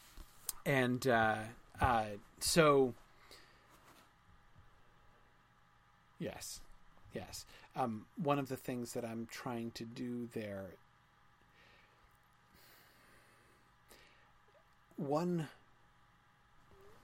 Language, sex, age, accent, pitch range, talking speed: English, male, 40-59, American, 110-130 Hz, 65 wpm